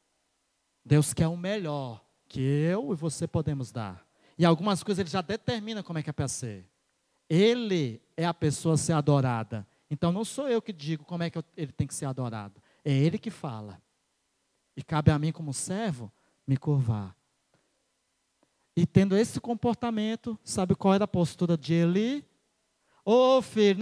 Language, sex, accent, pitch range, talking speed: Portuguese, male, Brazilian, 130-185 Hz, 170 wpm